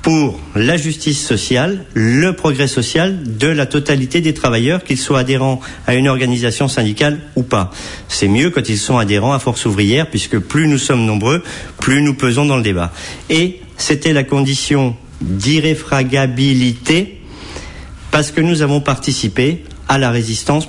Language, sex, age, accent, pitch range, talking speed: French, male, 50-69, French, 105-140 Hz, 155 wpm